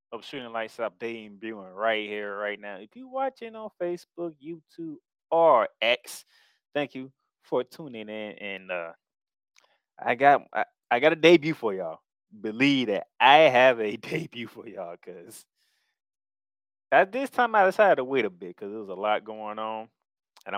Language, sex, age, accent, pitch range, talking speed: English, male, 20-39, American, 100-145 Hz, 170 wpm